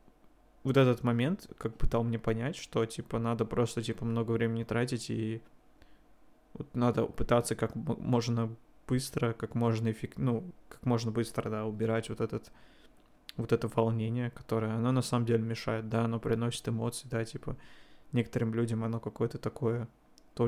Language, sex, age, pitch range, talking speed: Russian, male, 20-39, 115-125 Hz, 160 wpm